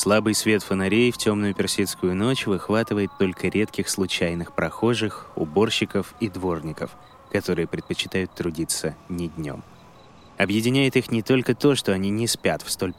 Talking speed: 145 wpm